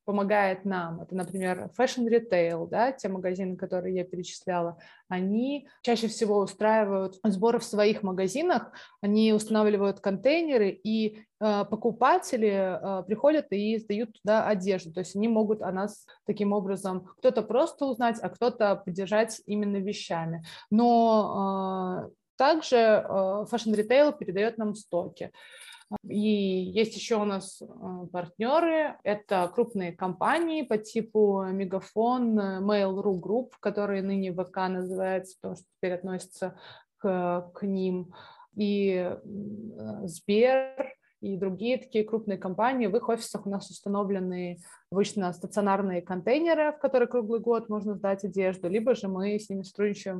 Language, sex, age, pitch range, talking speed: Russian, female, 20-39, 190-220 Hz, 130 wpm